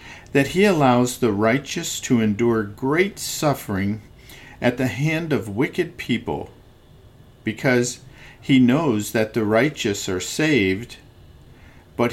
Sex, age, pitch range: male, 50-69, 100-135 Hz